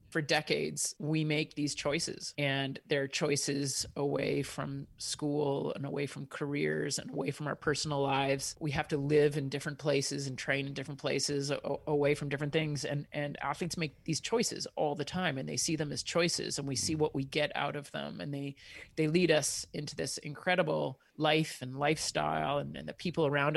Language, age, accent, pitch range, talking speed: English, 30-49, American, 135-155 Hz, 200 wpm